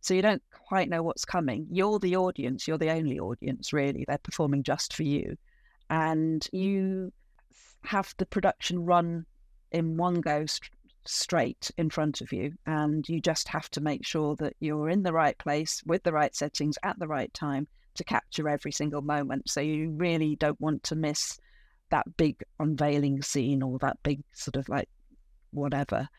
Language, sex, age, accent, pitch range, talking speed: English, female, 40-59, British, 150-185 Hz, 180 wpm